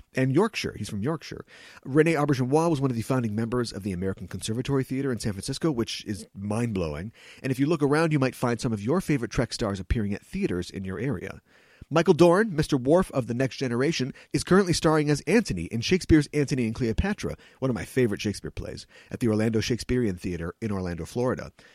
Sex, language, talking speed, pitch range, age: male, English, 210 wpm, 100-145 Hz, 40-59